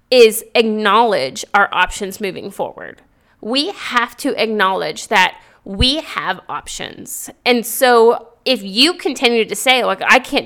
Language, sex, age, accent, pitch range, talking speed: English, female, 20-39, American, 205-265 Hz, 140 wpm